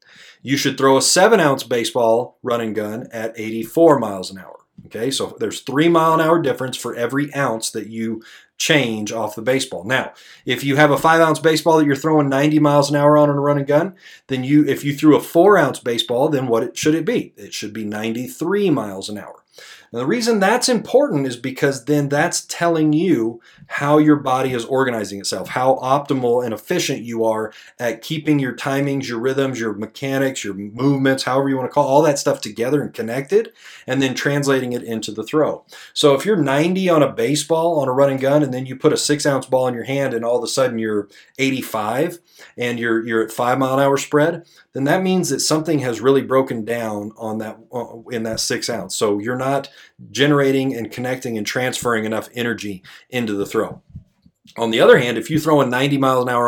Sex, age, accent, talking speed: male, 30-49, American, 210 wpm